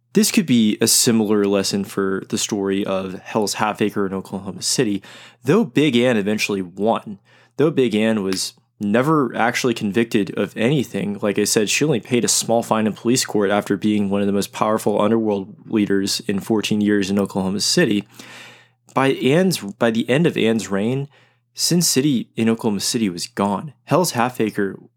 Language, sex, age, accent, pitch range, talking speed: English, male, 20-39, American, 100-125 Hz, 180 wpm